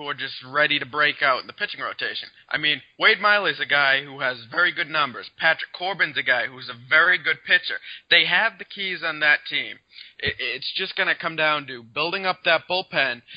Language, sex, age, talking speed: English, male, 20-39, 215 wpm